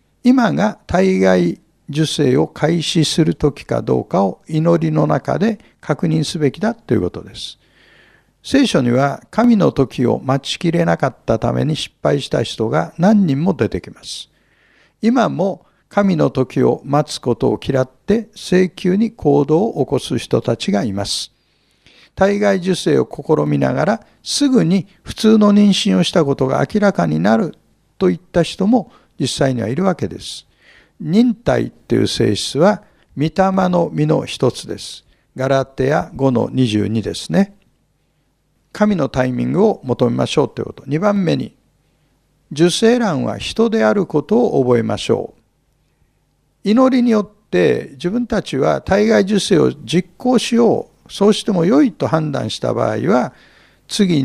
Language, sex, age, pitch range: Japanese, male, 60-79, 135-210 Hz